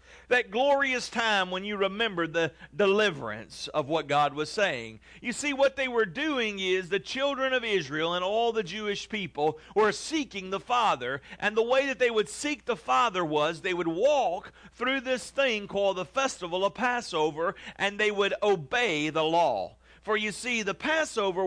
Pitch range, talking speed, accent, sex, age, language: 170-235 Hz, 180 wpm, American, male, 50-69, English